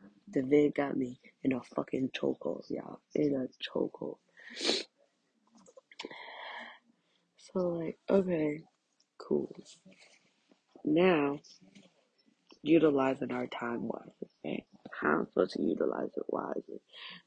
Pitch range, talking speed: 150-190 Hz, 100 wpm